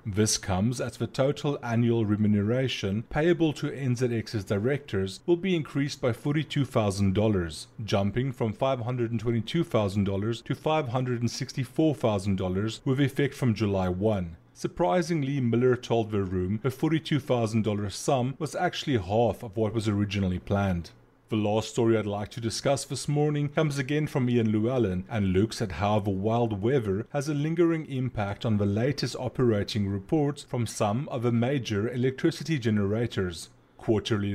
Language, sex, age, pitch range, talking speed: English, male, 30-49, 105-135 Hz, 140 wpm